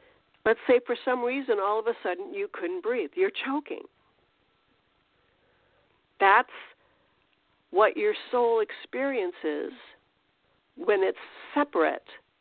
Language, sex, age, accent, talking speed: English, female, 50-69, American, 105 wpm